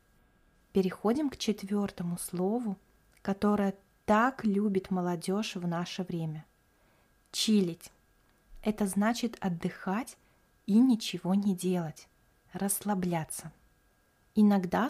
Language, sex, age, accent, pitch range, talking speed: Russian, female, 20-39, native, 185-225 Hz, 90 wpm